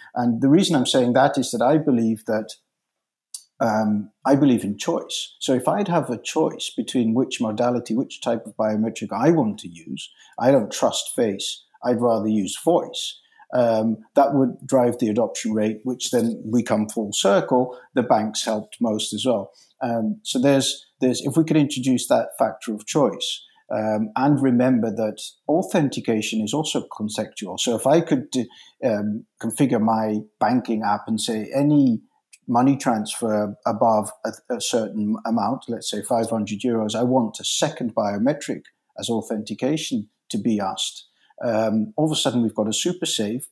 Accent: British